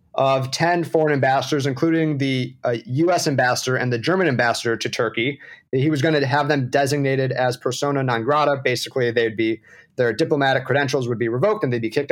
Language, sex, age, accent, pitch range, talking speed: English, male, 30-49, American, 130-155 Hz, 200 wpm